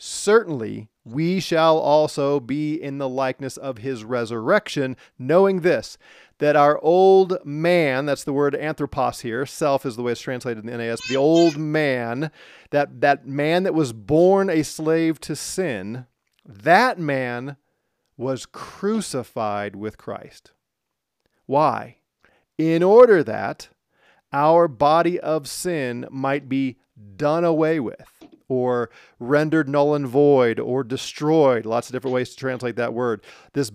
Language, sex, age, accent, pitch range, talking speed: English, male, 40-59, American, 125-160 Hz, 140 wpm